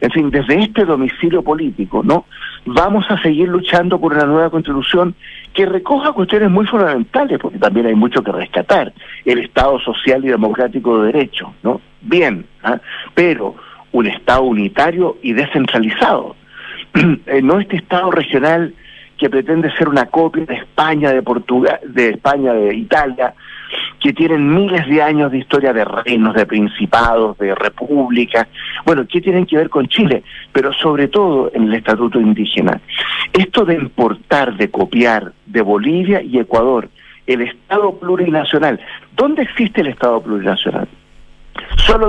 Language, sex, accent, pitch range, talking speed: Spanish, male, Argentinian, 120-180 Hz, 150 wpm